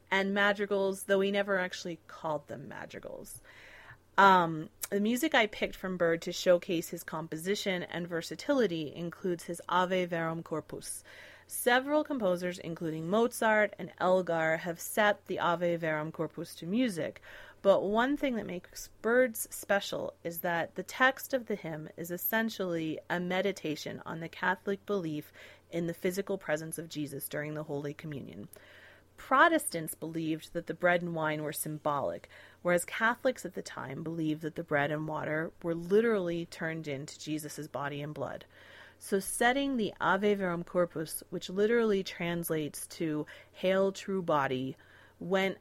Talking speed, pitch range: 150 wpm, 155-195 Hz